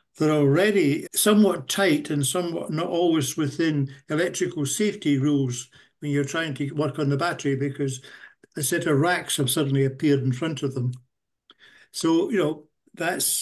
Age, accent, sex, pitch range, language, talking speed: 60-79, British, male, 145-190 Hz, English, 160 wpm